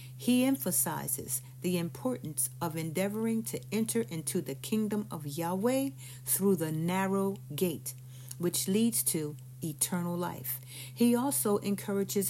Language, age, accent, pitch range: English, 50-69, American, 130-190 Hz